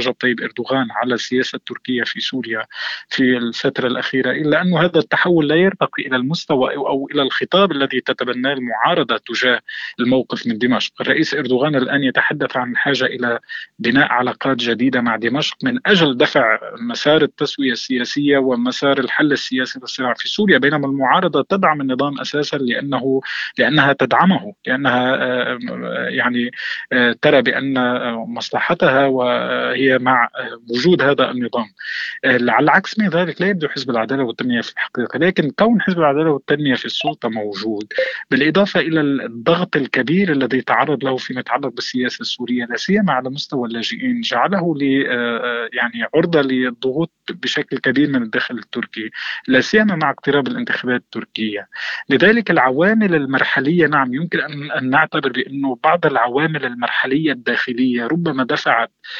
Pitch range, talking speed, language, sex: 125-155 Hz, 135 wpm, Arabic, male